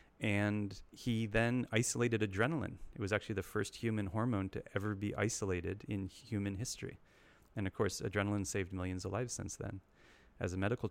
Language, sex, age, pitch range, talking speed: English, male, 30-49, 95-110 Hz, 175 wpm